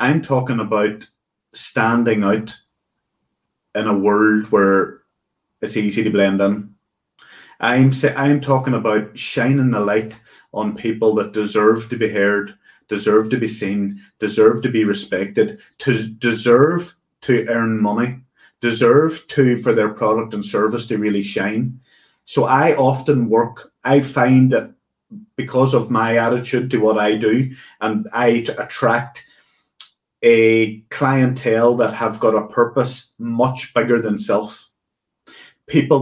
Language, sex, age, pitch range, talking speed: English, male, 30-49, 110-130 Hz, 135 wpm